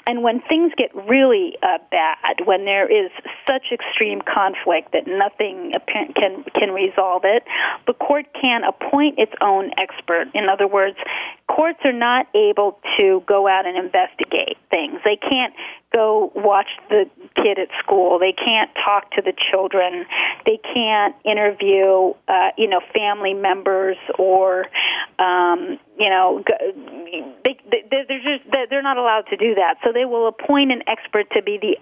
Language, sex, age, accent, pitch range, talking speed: English, female, 40-59, American, 190-315 Hz, 155 wpm